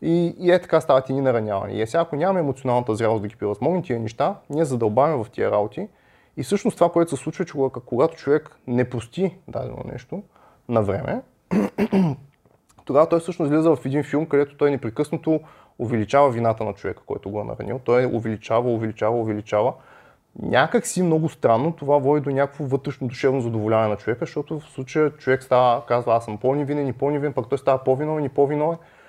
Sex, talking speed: male, 190 wpm